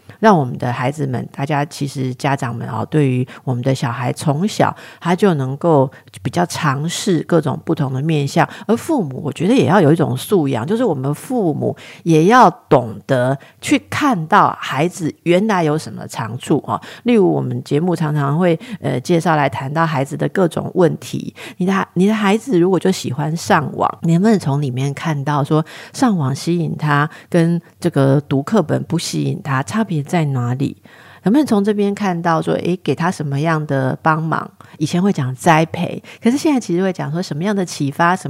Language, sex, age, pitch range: Chinese, female, 50-69, 140-180 Hz